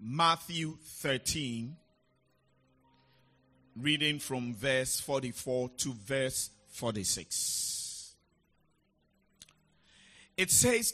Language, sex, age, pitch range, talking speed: English, male, 50-69, 115-170 Hz, 60 wpm